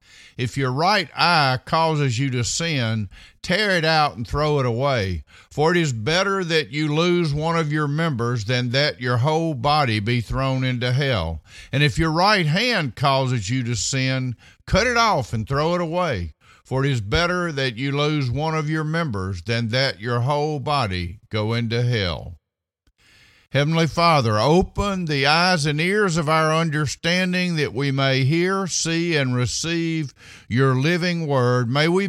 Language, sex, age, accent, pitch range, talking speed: English, male, 50-69, American, 120-165 Hz, 170 wpm